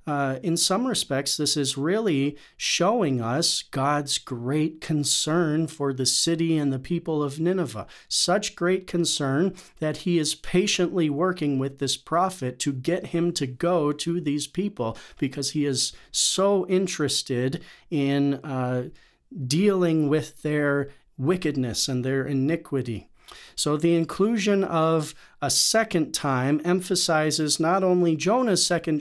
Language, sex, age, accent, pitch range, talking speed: English, male, 40-59, American, 140-180 Hz, 135 wpm